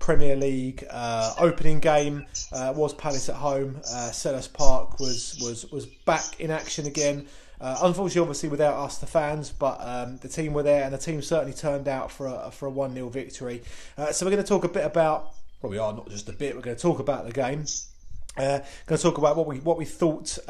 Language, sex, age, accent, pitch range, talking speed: English, male, 20-39, British, 130-155 Hz, 230 wpm